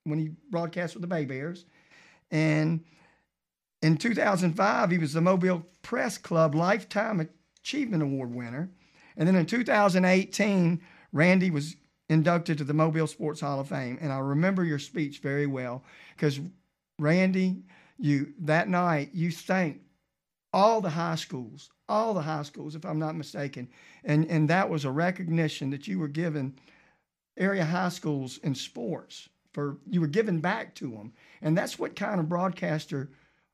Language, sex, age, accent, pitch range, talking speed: English, male, 50-69, American, 150-180 Hz, 155 wpm